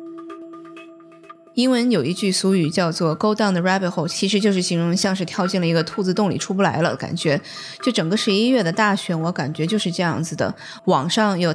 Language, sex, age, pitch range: Chinese, female, 20-39, 165-215 Hz